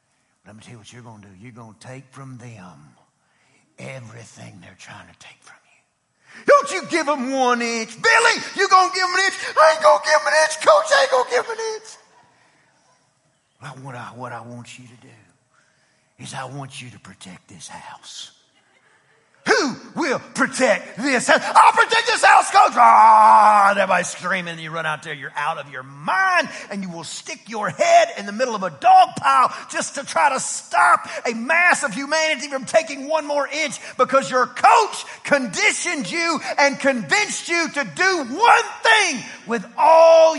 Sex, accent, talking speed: male, American, 195 wpm